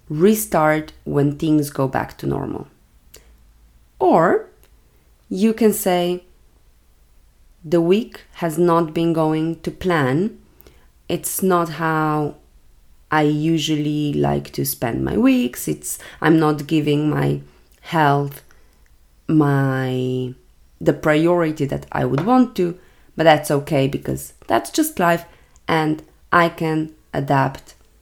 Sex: female